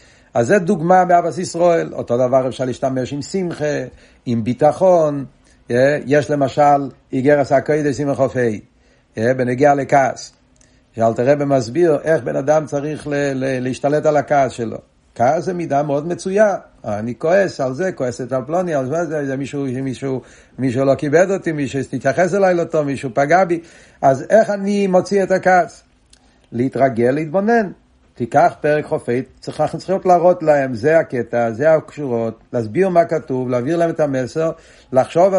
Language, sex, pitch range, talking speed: Hebrew, male, 130-170 Hz, 145 wpm